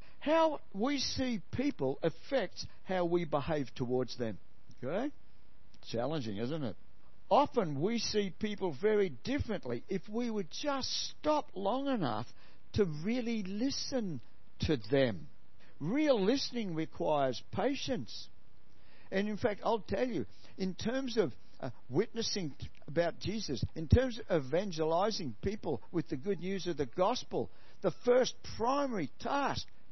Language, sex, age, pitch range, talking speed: English, male, 60-79, 130-215 Hz, 130 wpm